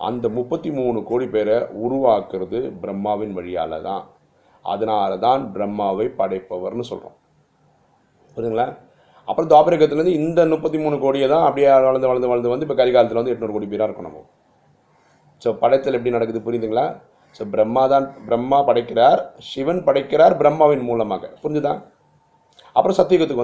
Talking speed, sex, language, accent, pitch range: 130 wpm, male, Tamil, native, 105-130 Hz